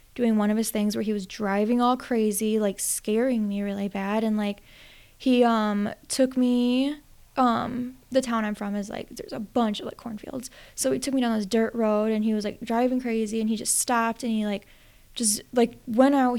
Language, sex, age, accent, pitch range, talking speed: English, female, 10-29, American, 205-235 Hz, 220 wpm